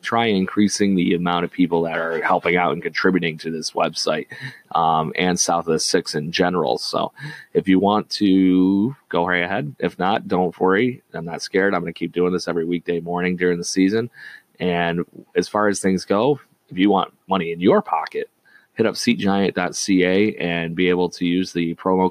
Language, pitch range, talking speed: English, 85-105 Hz, 195 wpm